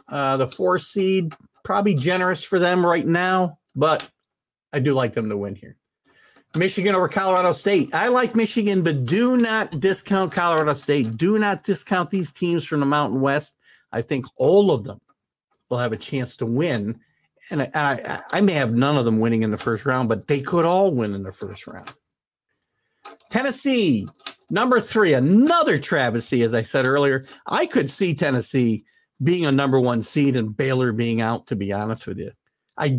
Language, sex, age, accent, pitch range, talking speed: English, male, 50-69, American, 120-190 Hz, 185 wpm